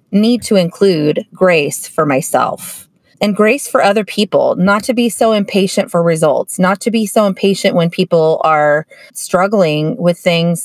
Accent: American